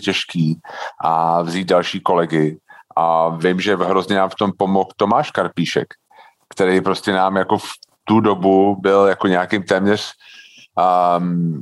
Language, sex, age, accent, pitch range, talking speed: Czech, male, 40-59, native, 95-120 Hz, 140 wpm